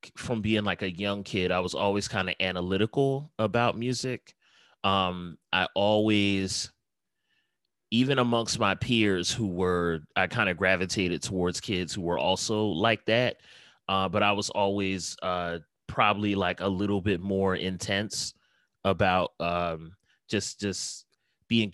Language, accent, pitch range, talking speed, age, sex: English, American, 90-105 Hz, 145 wpm, 30-49, male